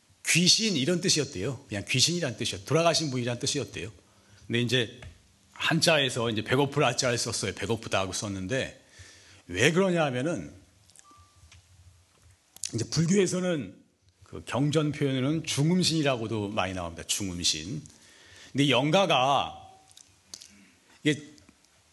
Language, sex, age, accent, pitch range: Korean, male, 40-59, native, 95-165 Hz